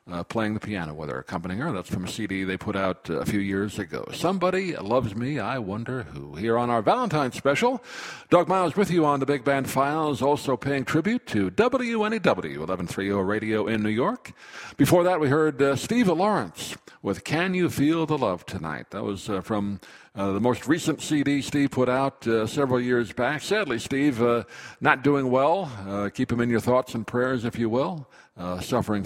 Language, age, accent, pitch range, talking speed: English, 60-79, American, 100-140 Hz, 205 wpm